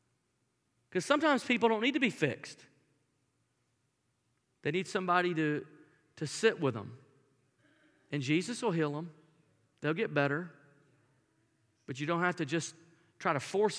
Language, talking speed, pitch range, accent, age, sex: English, 145 wpm, 140-180 Hz, American, 40-59, male